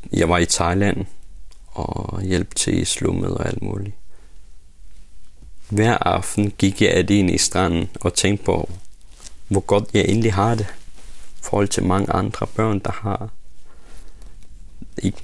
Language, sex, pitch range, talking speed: Danish, male, 80-105 Hz, 140 wpm